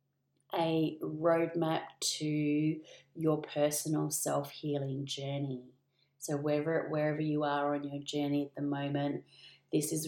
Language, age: English, 30-49